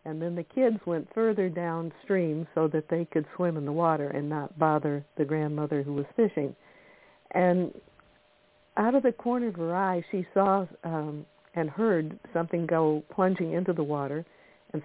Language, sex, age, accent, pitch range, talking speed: English, female, 60-79, American, 155-185 Hz, 175 wpm